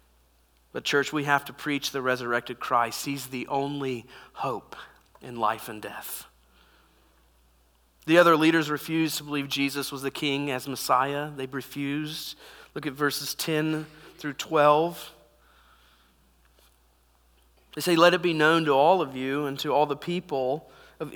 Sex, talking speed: male, 150 wpm